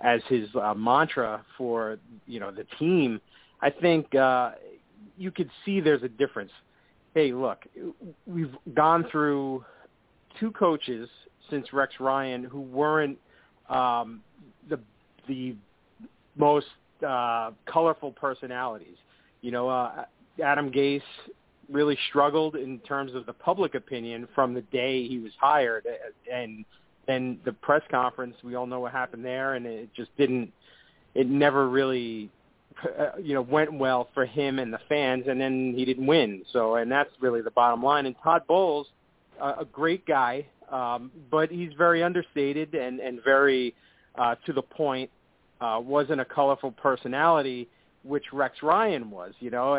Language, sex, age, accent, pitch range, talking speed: English, male, 40-59, American, 125-150 Hz, 150 wpm